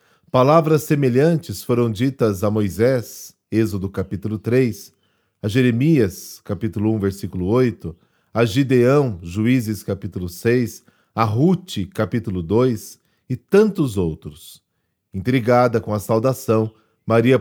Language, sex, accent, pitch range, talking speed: Portuguese, male, Brazilian, 105-135 Hz, 110 wpm